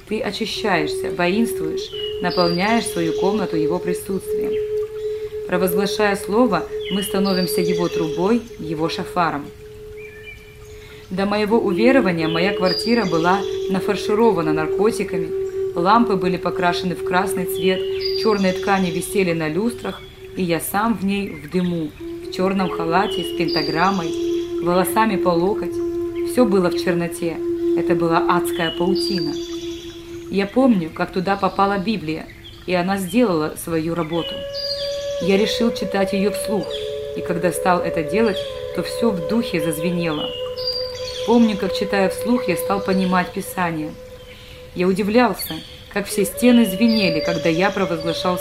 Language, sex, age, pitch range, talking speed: Russian, female, 20-39, 175-245 Hz, 125 wpm